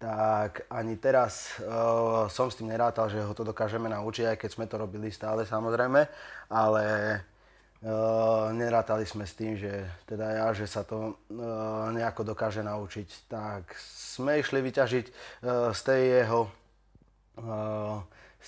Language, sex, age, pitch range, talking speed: Slovak, male, 20-39, 110-125 Hz, 155 wpm